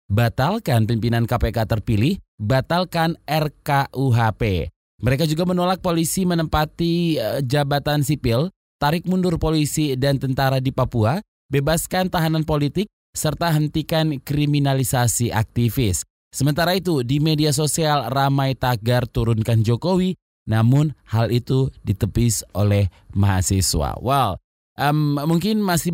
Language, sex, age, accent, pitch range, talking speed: Indonesian, male, 20-39, native, 110-145 Hz, 105 wpm